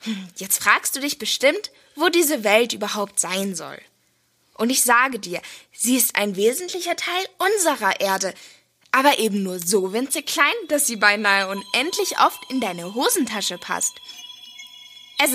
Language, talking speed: German, 150 wpm